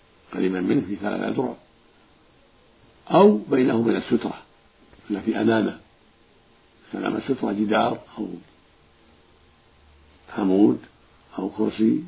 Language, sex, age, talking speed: Arabic, male, 50-69, 95 wpm